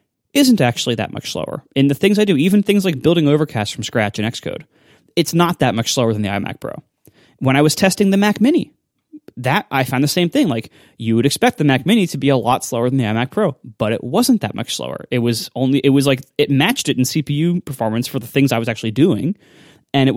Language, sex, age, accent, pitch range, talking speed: English, male, 20-39, American, 130-175 Hz, 250 wpm